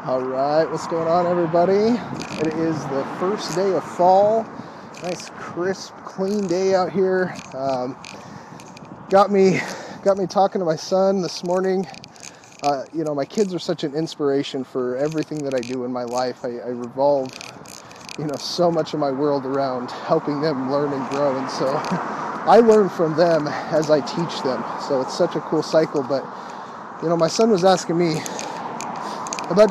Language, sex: English, male